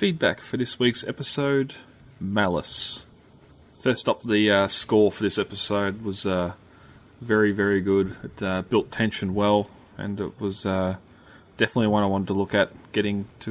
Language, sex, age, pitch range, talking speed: English, male, 20-39, 100-120 Hz, 165 wpm